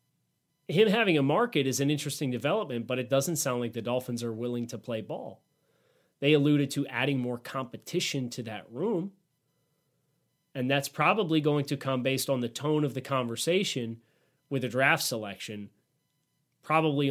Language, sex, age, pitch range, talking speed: English, male, 30-49, 125-155 Hz, 165 wpm